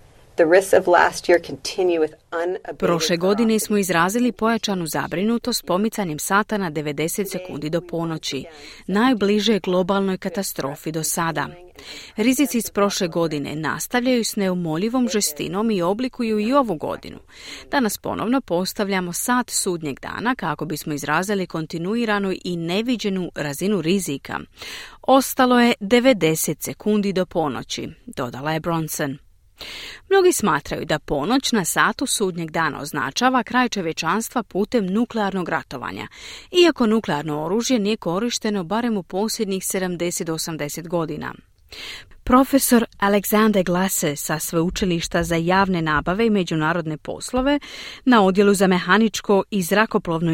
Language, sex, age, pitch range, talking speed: Croatian, female, 30-49, 165-220 Hz, 115 wpm